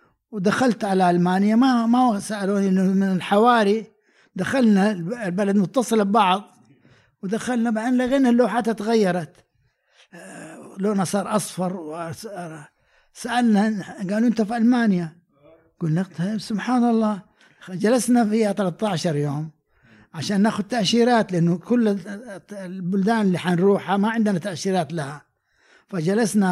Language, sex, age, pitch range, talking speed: Arabic, male, 60-79, 170-210 Hz, 105 wpm